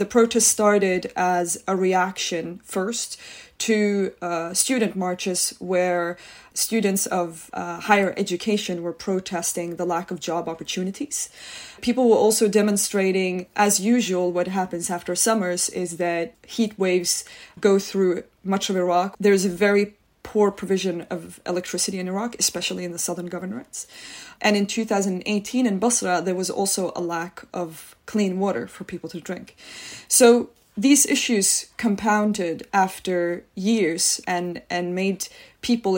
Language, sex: English, female